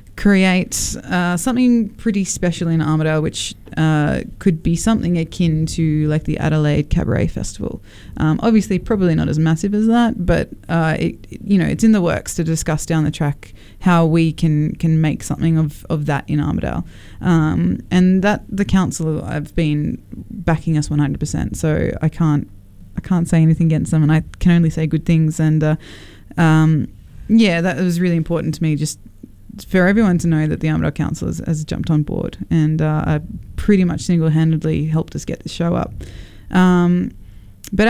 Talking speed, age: 185 wpm, 20-39